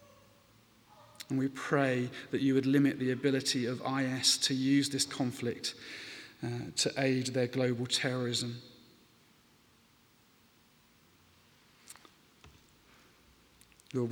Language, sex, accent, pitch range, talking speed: English, male, British, 130-140 Hz, 95 wpm